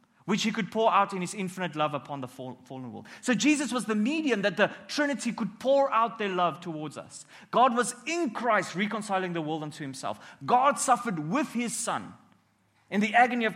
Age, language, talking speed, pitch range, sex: 30-49, English, 205 wpm, 185-250 Hz, male